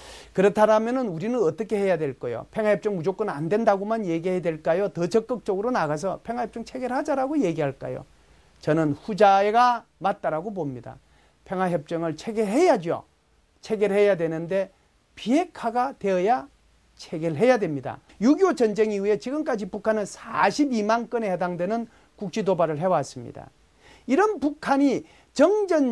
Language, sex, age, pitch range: Korean, male, 40-59, 175-240 Hz